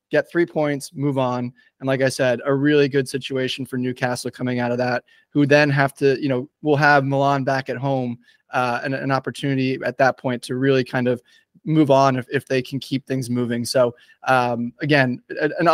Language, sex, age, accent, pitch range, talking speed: English, male, 20-39, American, 130-150 Hz, 215 wpm